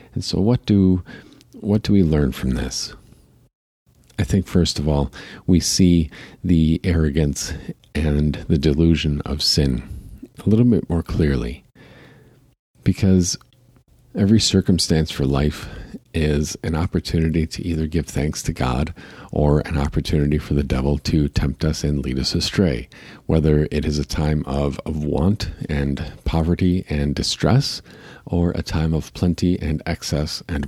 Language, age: English, 50-69